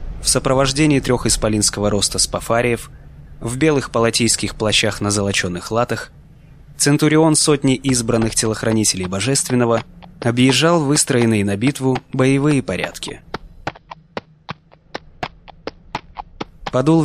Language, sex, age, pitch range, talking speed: Russian, male, 20-39, 110-140 Hz, 90 wpm